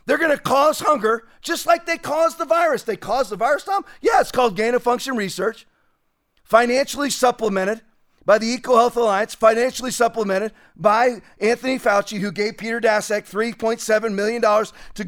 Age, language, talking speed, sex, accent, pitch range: 40-59, English, 155 wpm, male, American, 210-255 Hz